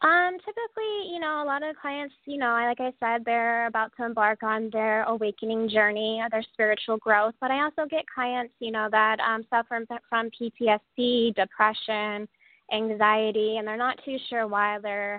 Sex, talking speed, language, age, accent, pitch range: female, 180 wpm, English, 20-39, American, 210-235 Hz